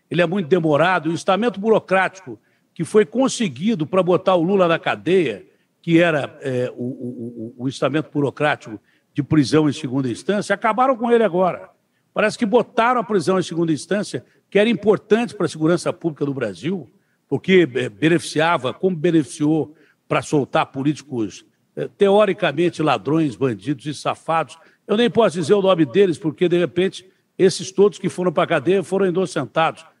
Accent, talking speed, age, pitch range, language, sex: Brazilian, 165 wpm, 60-79, 150-215 Hz, Portuguese, male